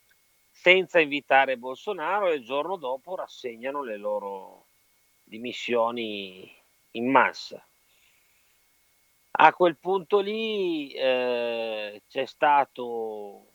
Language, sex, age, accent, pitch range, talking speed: Italian, male, 40-59, native, 115-145 Hz, 90 wpm